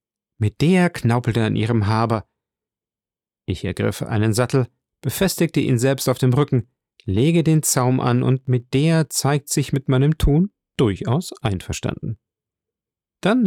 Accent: German